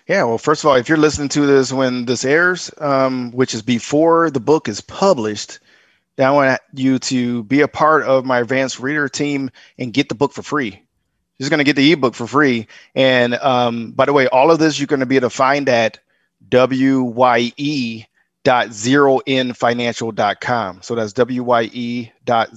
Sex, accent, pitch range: male, American, 120-135 Hz